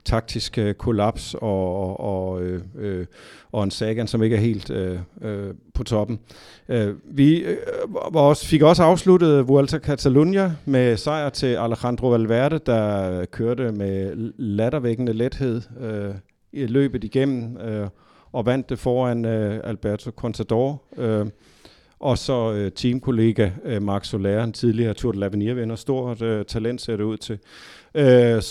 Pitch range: 105-130 Hz